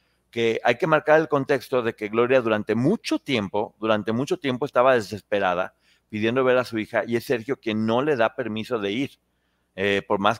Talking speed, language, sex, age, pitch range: 200 wpm, Spanish, male, 40-59, 110-140 Hz